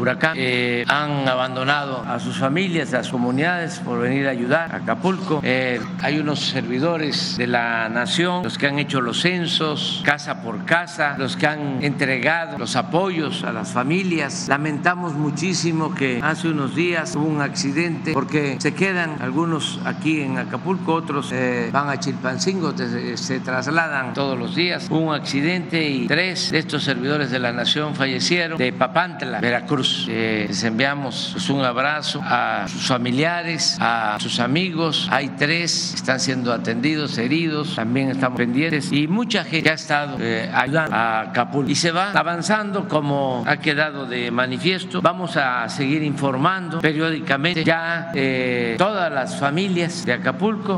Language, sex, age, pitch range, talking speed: Spanish, male, 60-79, 130-165 Hz, 160 wpm